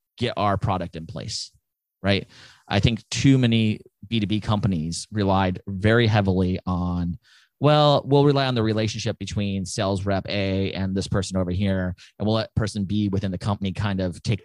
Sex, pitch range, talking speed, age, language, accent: male, 95-115 Hz, 175 wpm, 30-49, English, American